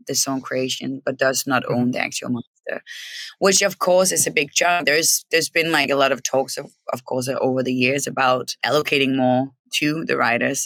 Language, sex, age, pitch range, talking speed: English, female, 20-39, 130-155 Hz, 210 wpm